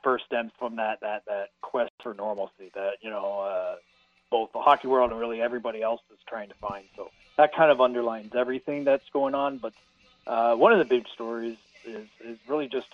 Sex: male